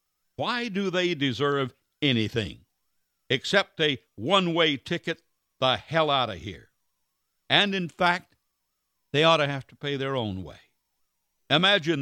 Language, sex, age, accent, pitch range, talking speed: English, male, 60-79, American, 110-155 Hz, 135 wpm